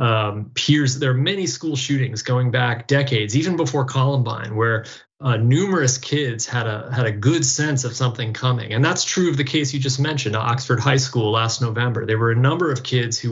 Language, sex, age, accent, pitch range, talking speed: English, male, 30-49, American, 115-135 Hz, 210 wpm